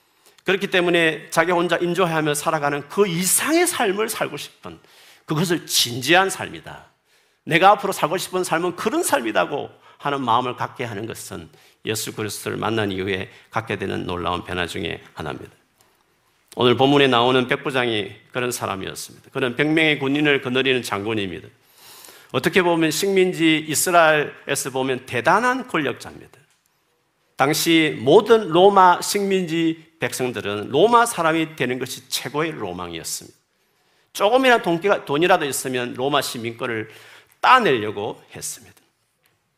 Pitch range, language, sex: 125-180 Hz, Korean, male